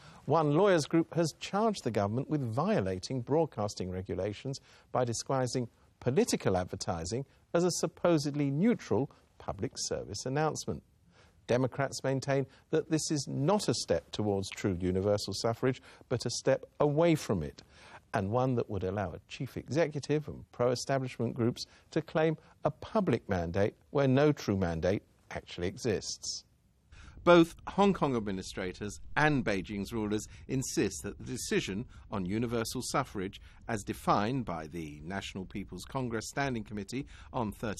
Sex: male